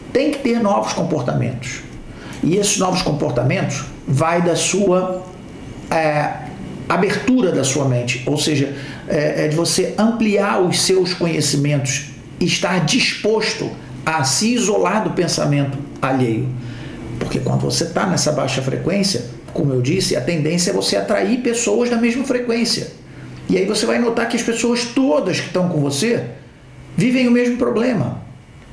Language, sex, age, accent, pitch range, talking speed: Portuguese, male, 50-69, Brazilian, 145-205 Hz, 150 wpm